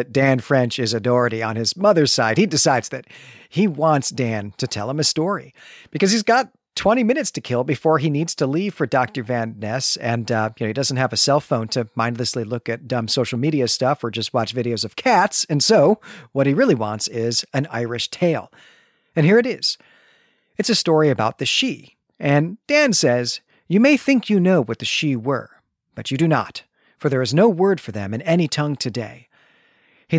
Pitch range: 120-180 Hz